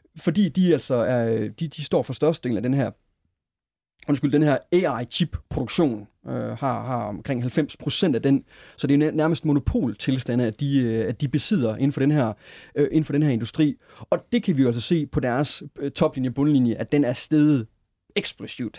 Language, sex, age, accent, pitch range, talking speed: Danish, male, 30-49, native, 125-165 Hz, 200 wpm